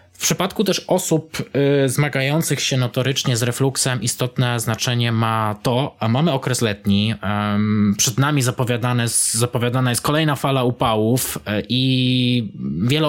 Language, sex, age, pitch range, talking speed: Polish, male, 20-39, 105-130 Hz, 125 wpm